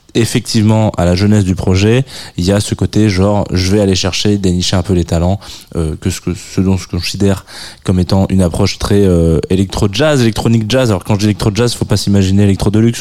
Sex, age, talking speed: male, 20-39, 225 wpm